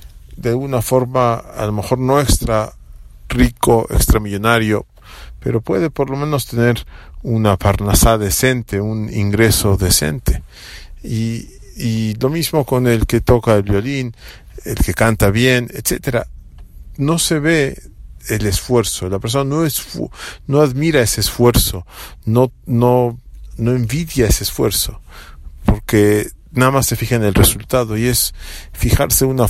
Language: English